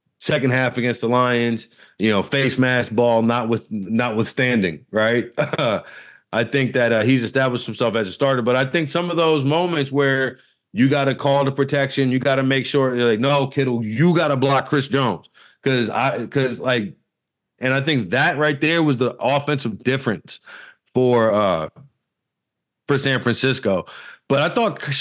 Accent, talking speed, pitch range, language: American, 185 wpm, 125-155 Hz, English